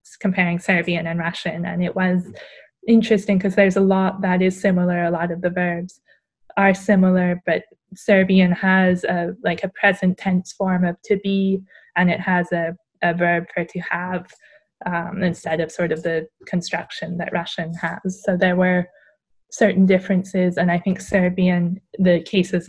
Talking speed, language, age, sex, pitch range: 170 wpm, English, 10-29, female, 170-195 Hz